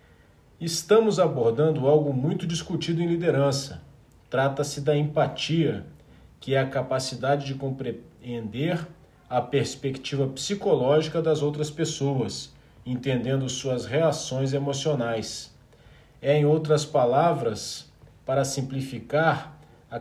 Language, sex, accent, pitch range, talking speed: Portuguese, male, Brazilian, 125-160 Hz, 100 wpm